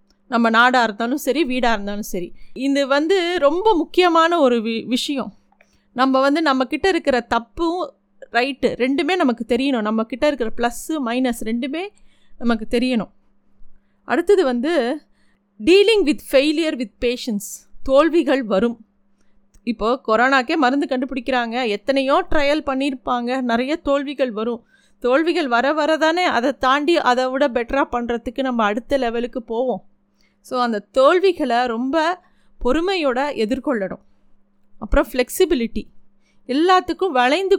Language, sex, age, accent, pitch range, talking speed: Tamil, female, 30-49, native, 230-290 Hz, 115 wpm